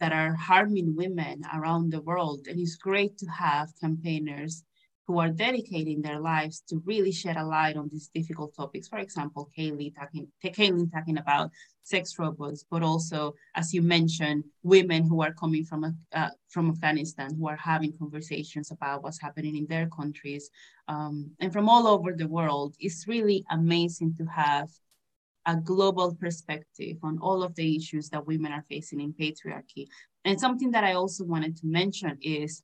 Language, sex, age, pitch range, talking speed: English, female, 20-39, 155-195 Hz, 175 wpm